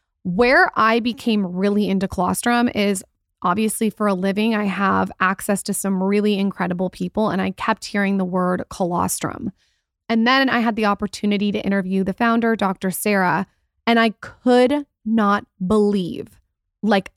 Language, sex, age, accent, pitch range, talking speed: English, female, 20-39, American, 195-230 Hz, 155 wpm